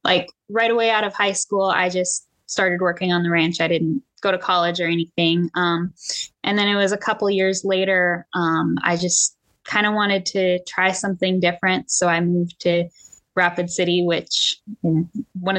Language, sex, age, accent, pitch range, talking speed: English, female, 10-29, American, 175-210 Hz, 190 wpm